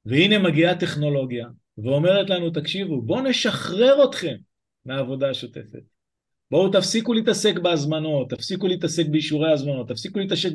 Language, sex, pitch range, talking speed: Hebrew, male, 150-200 Hz, 120 wpm